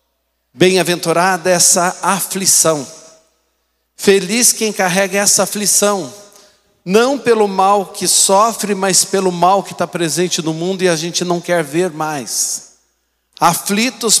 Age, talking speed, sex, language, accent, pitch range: 50-69, 125 wpm, male, Portuguese, Brazilian, 140-195 Hz